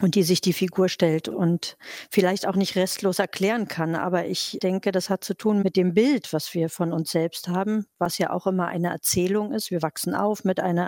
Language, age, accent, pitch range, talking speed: German, 50-69, German, 170-200 Hz, 225 wpm